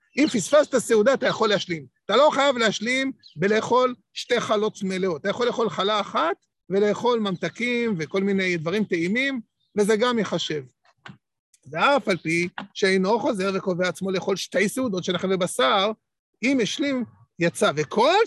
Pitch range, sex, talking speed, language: 185-240 Hz, male, 150 wpm, Hebrew